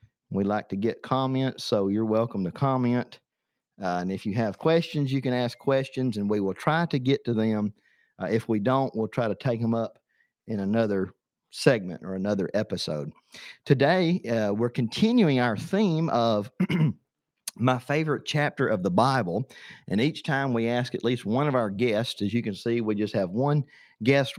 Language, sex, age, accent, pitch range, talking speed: English, male, 50-69, American, 110-140 Hz, 190 wpm